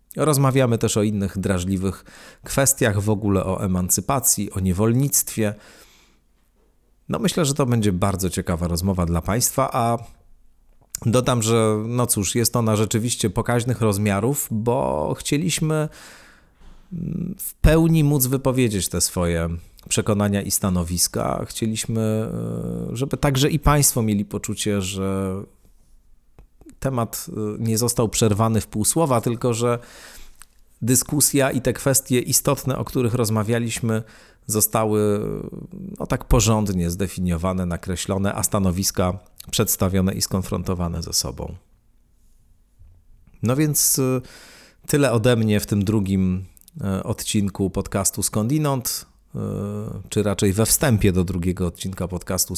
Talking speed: 115 wpm